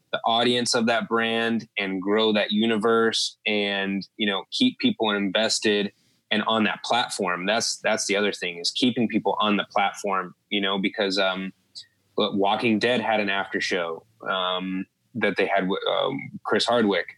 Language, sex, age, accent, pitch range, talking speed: English, male, 20-39, American, 95-110 Hz, 160 wpm